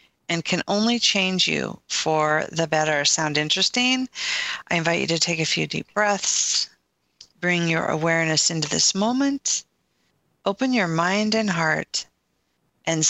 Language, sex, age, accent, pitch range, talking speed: English, female, 40-59, American, 160-195 Hz, 140 wpm